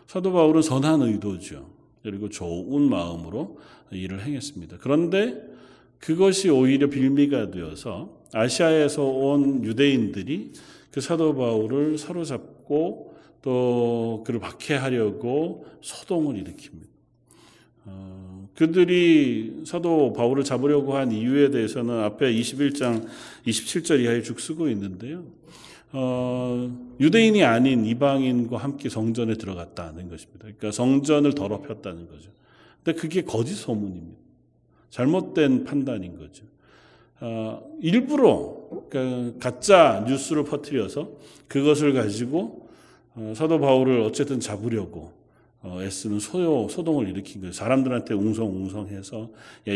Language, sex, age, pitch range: Korean, male, 40-59, 110-145 Hz